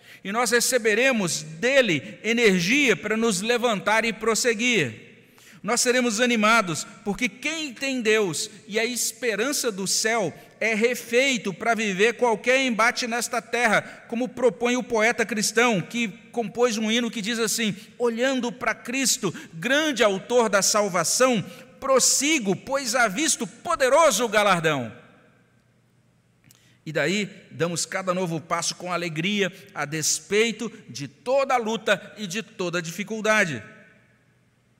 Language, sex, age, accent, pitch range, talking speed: Portuguese, male, 50-69, Brazilian, 180-235 Hz, 130 wpm